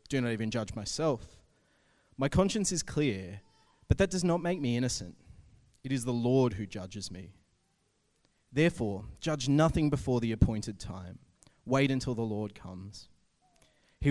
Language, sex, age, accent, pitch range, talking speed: English, male, 20-39, Australian, 105-150 Hz, 155 wpm